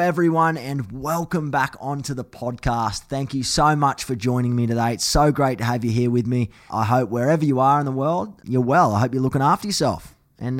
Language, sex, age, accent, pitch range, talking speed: English, male, 20-39, Australian, 110-130 Hz, 230 wpm